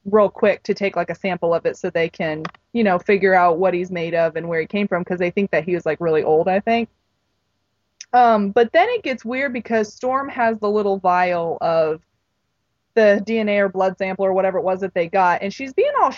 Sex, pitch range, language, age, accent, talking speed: female, 180-225 Hz, English, 20-39, American, 240 wpm